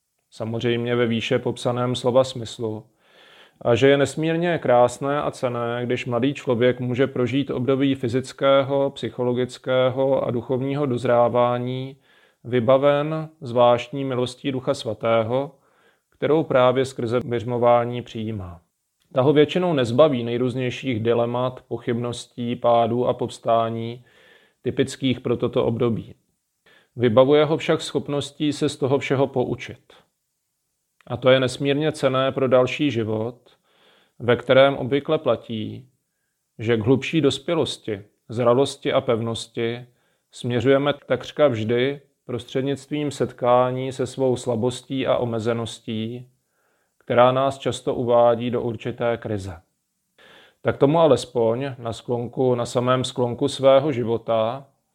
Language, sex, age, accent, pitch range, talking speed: Czech, male, 30-49, native, 120-135 Hz, 110 wpm